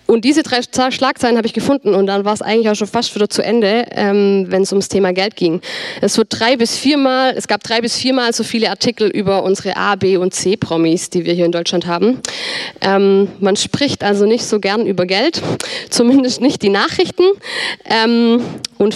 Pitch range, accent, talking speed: 190-235 Hz, German, 215 wpm